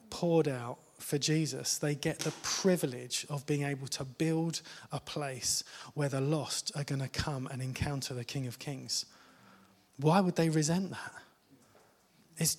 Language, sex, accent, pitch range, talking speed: English, male, British, 145-180 Hz, 160 wpm